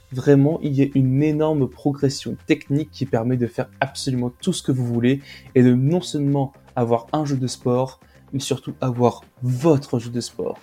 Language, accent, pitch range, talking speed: French, French, 125-145 Hz, 190 wpm